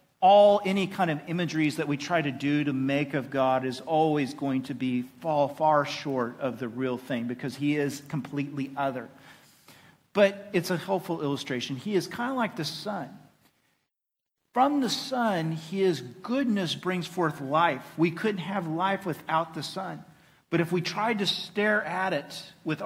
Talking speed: 175 wpm